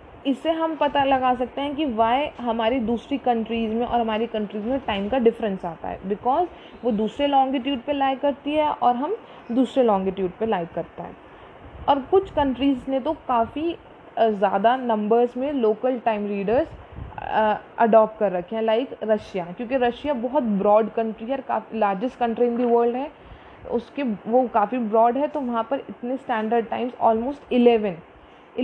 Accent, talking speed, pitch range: Indian, 150 wpm, 220-270 Hz